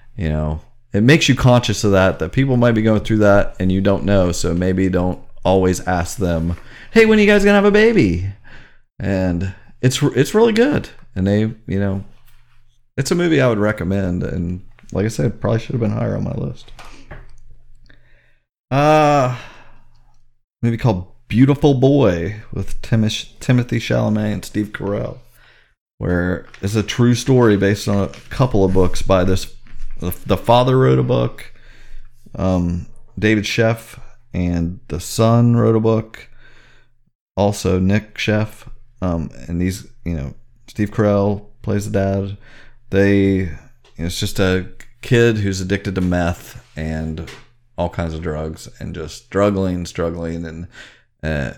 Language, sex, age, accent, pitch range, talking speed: English, male, 40-59, American, 95-120 Hz, 160 wpm